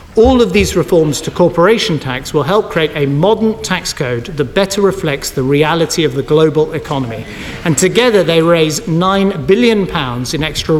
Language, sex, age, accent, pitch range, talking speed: English, male, 40-59, British, 155-210 Hz, 170 wpm